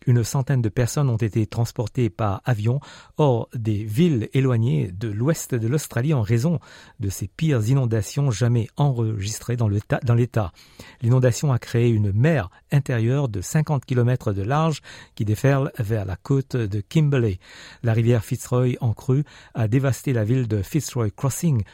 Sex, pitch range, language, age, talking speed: male, 110-135 Hz, French, 50-69, 165 wpm